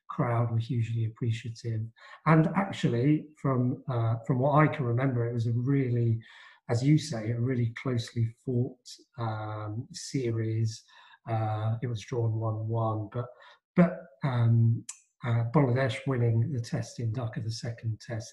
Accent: British